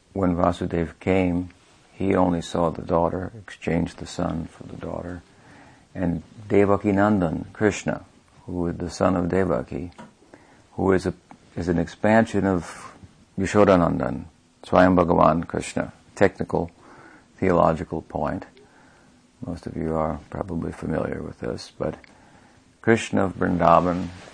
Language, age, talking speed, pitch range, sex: English, 50-69, 125 wpm, 85-100 Hz, male